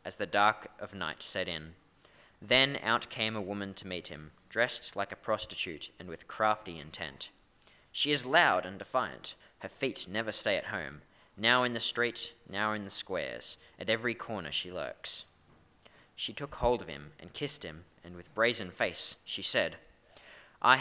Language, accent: English, Australian